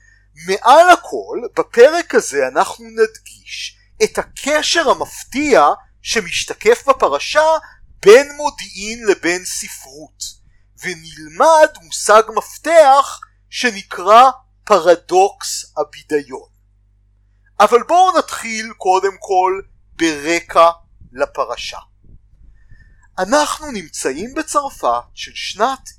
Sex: male